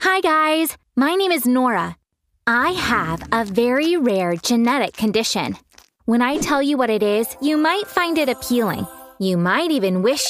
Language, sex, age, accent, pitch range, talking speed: English, female, 20-39, American, 210-295 Hz, 170 wpm